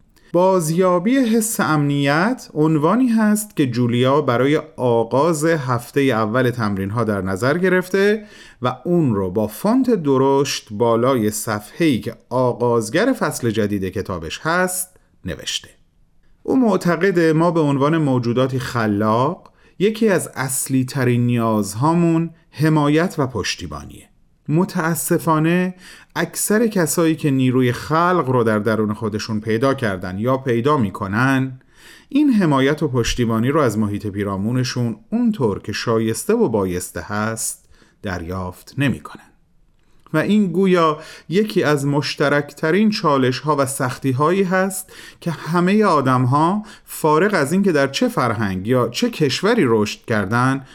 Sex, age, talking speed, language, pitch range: male, 40-59, 125 wpm, Persian, 115-170 Hz